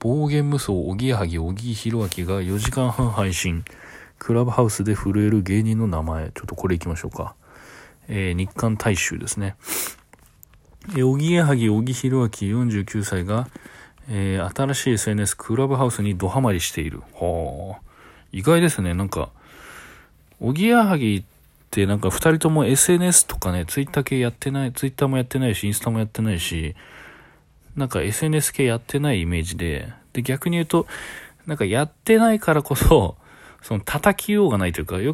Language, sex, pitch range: Japanese, male, 95-140 Hz